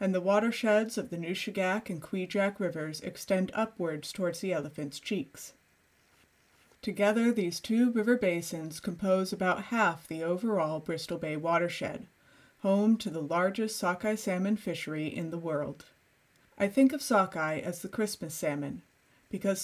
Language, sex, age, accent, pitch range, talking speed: English, female, 30-49, American, 165-210 Hz, 145 wpm